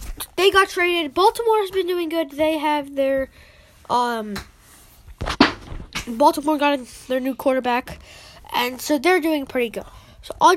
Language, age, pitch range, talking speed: English, 10-29, 245-315 Hz, 140 wpm